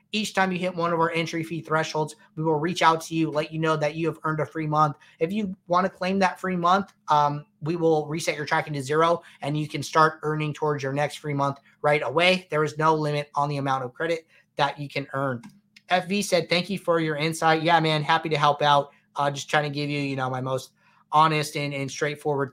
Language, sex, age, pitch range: English, male, 20-39, 145-170 Hz